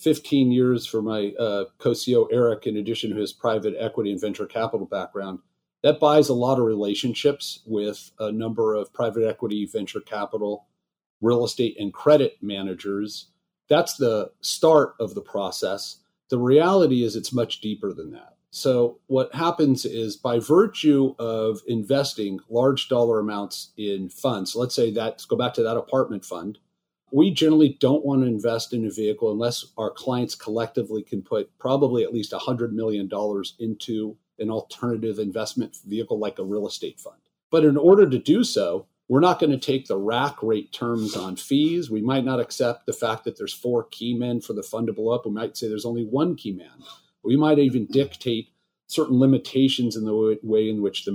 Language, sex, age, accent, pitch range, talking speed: English, male, 40-59, American, 110-140 Hz, 185 wpm